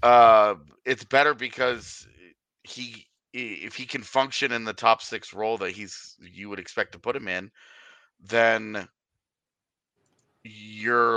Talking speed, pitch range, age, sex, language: 135 wpm, 105-120 Hz, 30-49, male, English